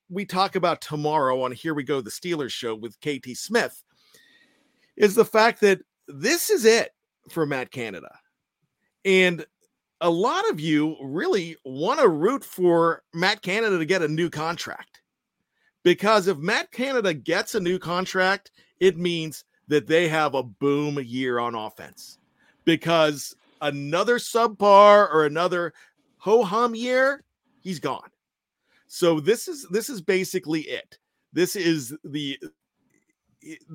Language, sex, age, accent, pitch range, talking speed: English, male, 40-59, American, 155-240 Hz, 140 wpm